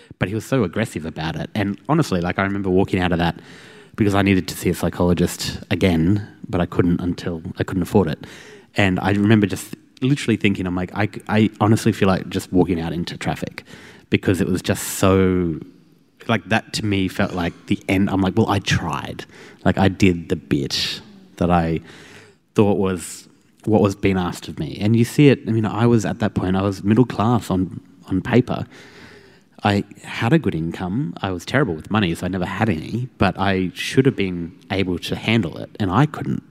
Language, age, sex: English, 30-49, male